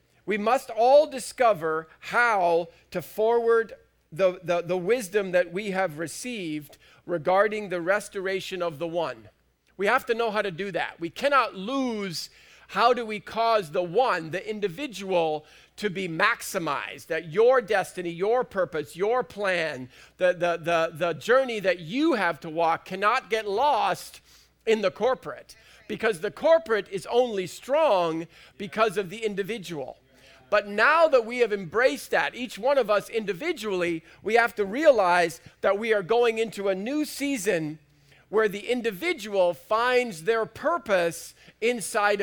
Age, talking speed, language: 50-69, 150 wpm, English